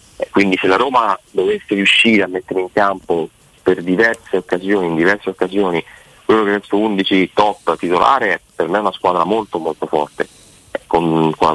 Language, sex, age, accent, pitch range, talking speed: Italian, male, 30-49, native, 85-100 Hz, 175 wpm